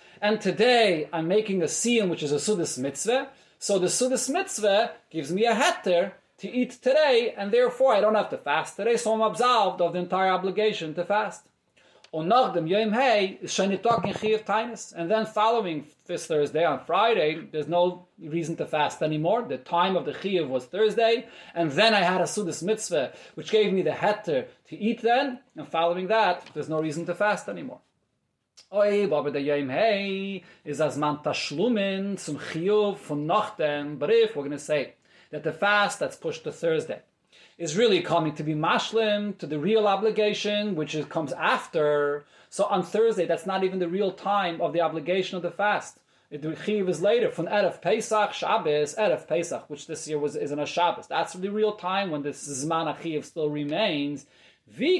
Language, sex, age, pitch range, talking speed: English, male, 30-49, 155-215 Hz, 165 wpm